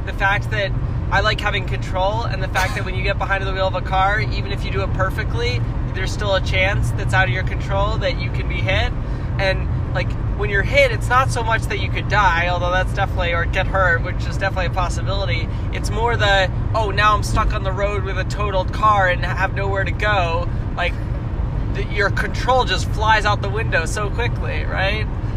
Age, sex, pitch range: 20-39, male, 105-115 Hz